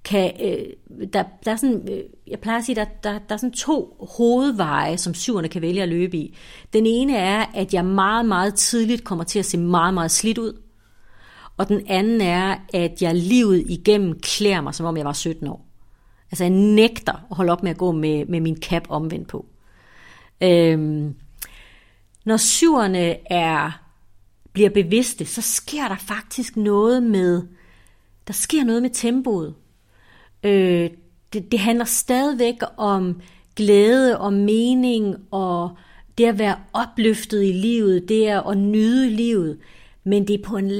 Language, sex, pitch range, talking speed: Danish, female, 170-220 Hz, 160 wpm